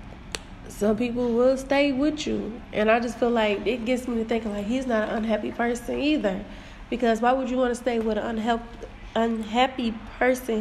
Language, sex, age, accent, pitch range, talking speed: English, female, 20-39, American, 205-235 Hz, 190 wpm